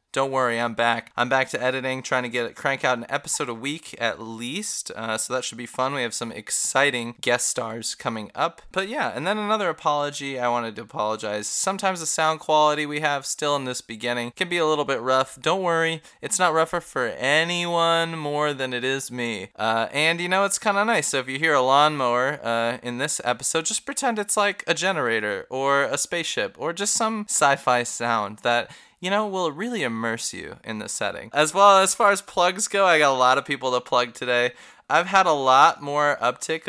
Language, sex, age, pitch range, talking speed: English, male, 20-39, 120-160 Hz, 220 wpm